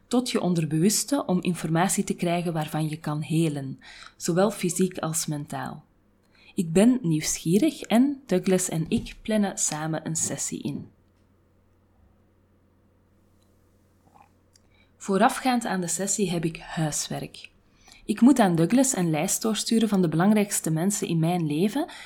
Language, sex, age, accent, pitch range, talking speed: Dutch, female, 20-39, Belgian, 145-200 Hz, 130 wpm